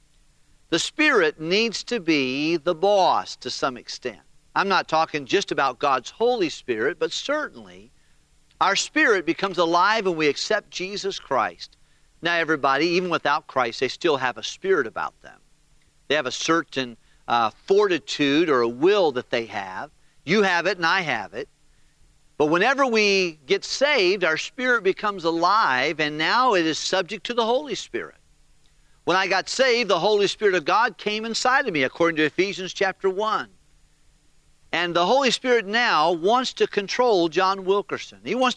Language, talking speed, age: English, 170 wpm, 50-69